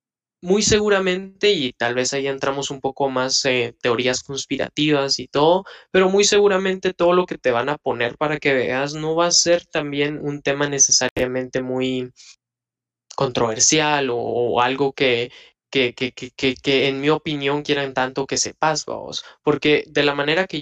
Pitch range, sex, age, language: 135-165 Hz, male, 20-39, Spanish